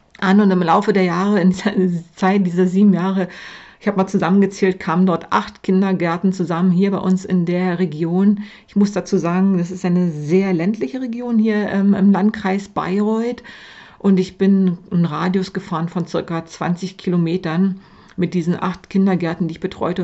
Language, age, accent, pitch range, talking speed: German, 50-69, German, 170-195 Hz, 175 wpm